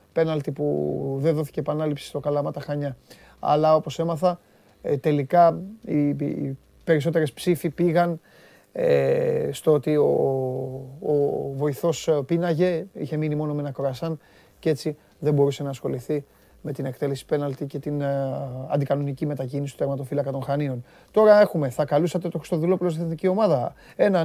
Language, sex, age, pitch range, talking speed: Greek, male, 30-49, 145-180 Hz, 140 wpm